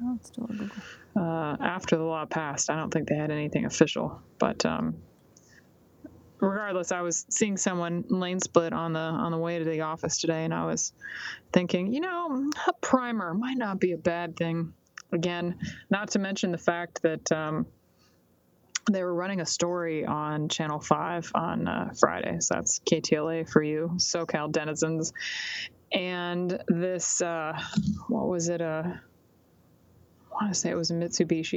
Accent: American